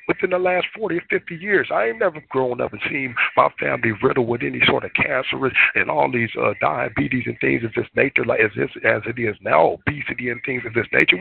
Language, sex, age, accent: Japanese, male, 50-69, American